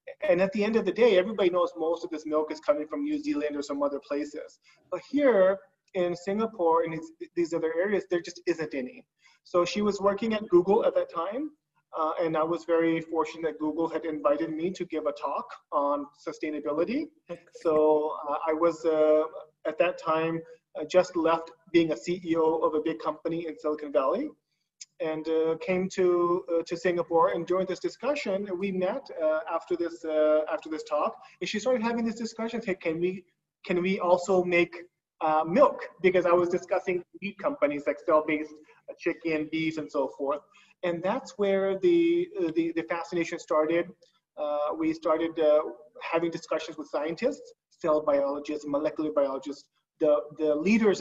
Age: 30-49